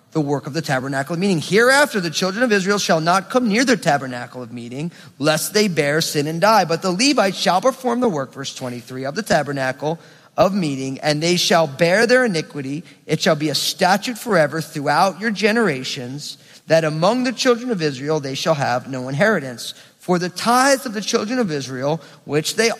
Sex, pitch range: male, 140-205 Hz